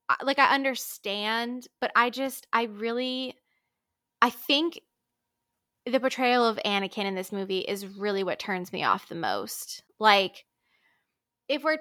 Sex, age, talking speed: female, 10-29, 140 wpm